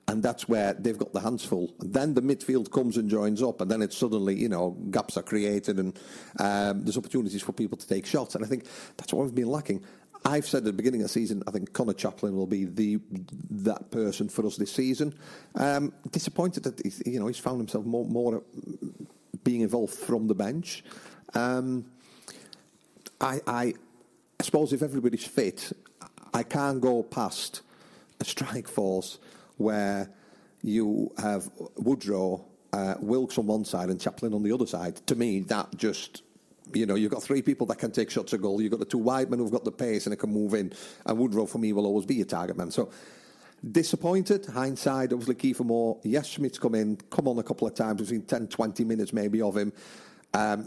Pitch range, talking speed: 105-130 Hz, 205 wpm